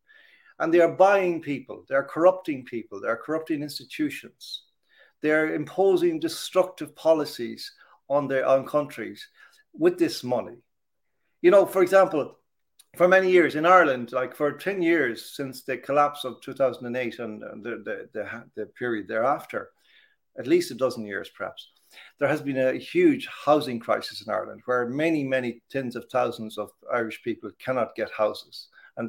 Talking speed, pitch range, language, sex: 155 wpm, 125-185 Hz, English, male